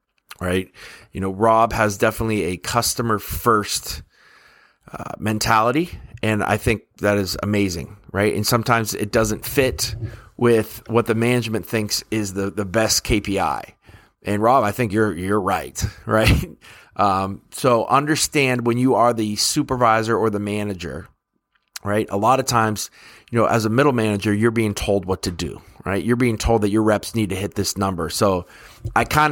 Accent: American